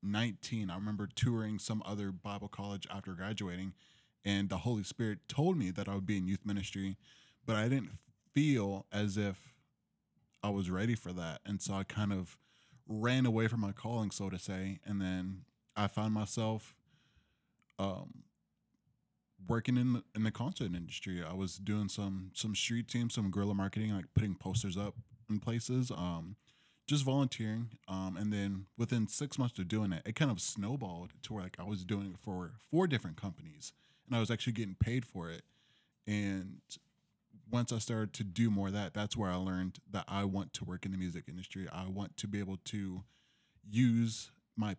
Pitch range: 95-115 Hz